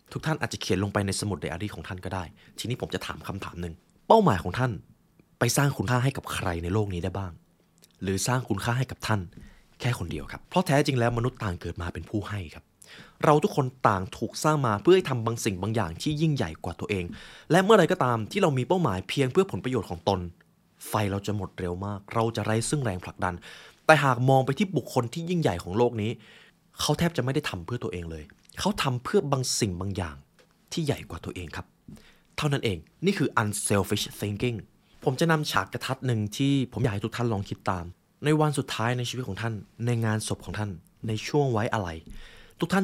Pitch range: 95-140 Hz